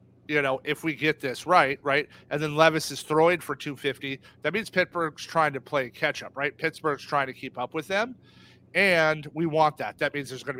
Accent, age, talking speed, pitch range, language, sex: American, 40-59, 225 wpm, 135-160 Hz, English, male